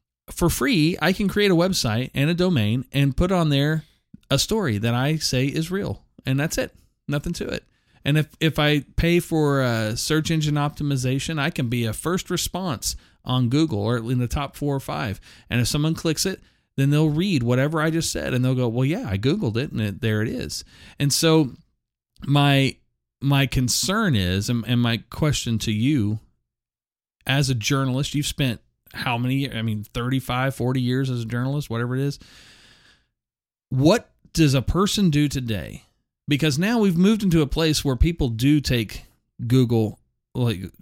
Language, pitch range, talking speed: English, 115-155 Hz, 185 wpm